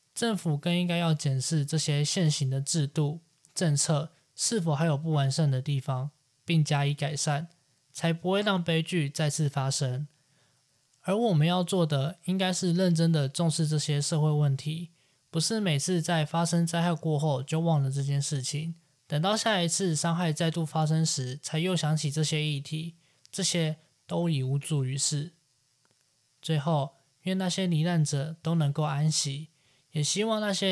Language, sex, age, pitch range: Chinese, male, 20-39, 145-170 Hz